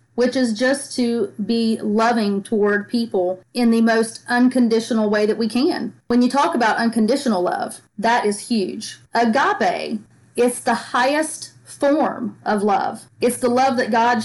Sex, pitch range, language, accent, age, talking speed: female, 200-245 Hz, English, American, 30-49, 155 wpm